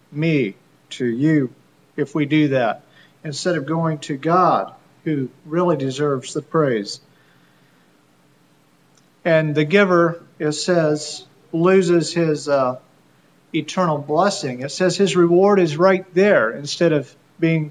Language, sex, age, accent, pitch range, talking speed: English, male, 50-69, American, 140-175 Hz, 125 wpm